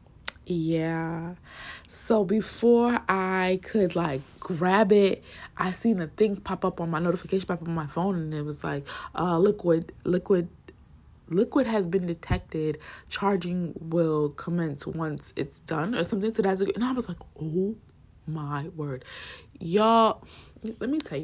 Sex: female